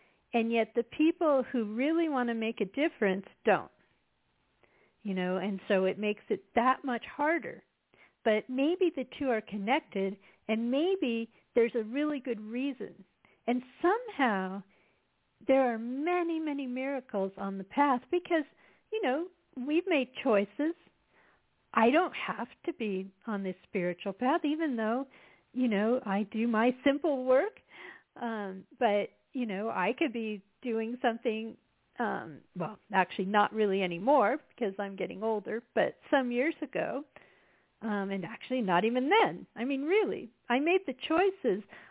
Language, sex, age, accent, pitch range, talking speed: English, female, 50-69, American, 200-275 Hz, 150 wpm